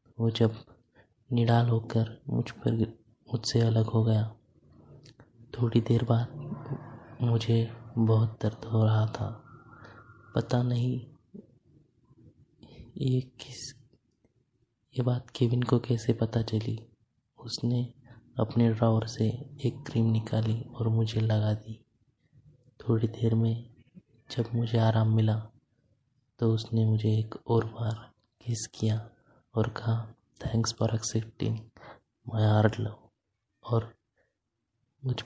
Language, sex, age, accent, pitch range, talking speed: Hindi, male, 20-39, native, 110-120 Hz, 110 wpm